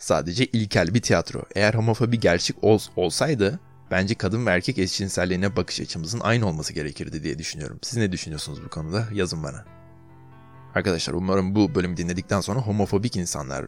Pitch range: 85-110 Hz